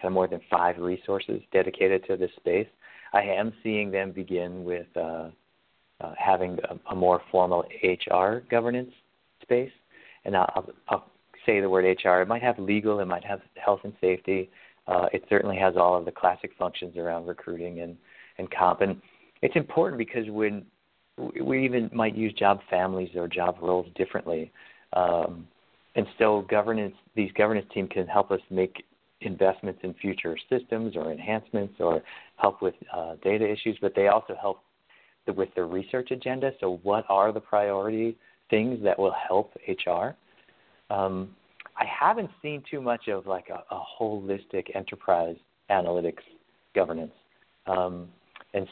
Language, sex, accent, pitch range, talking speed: English, male, American, 90-110 Hz, 160 wpm